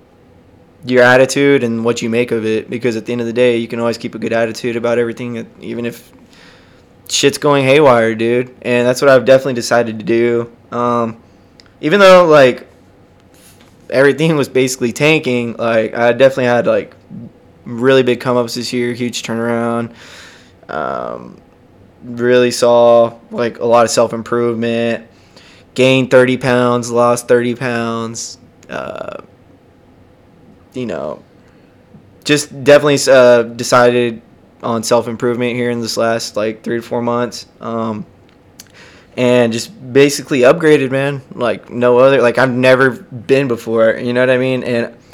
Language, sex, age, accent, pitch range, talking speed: English, male, 20-39, American, 115-125 Hz, 150 wpm